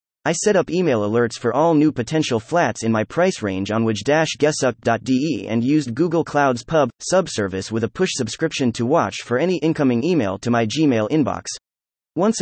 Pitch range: 110-160 Hz